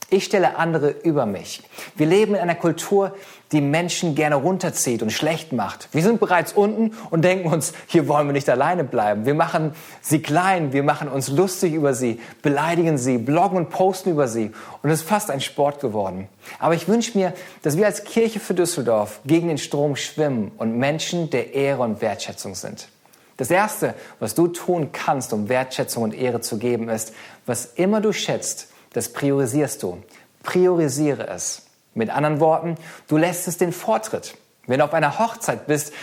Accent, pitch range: German, 140-180 Hz